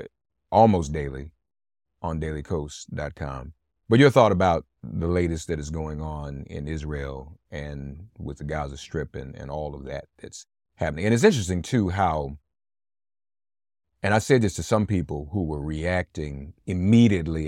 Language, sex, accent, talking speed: English, male, American, 150 wpm